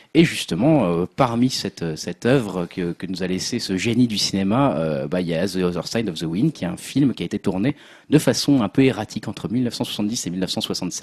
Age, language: 30-49, French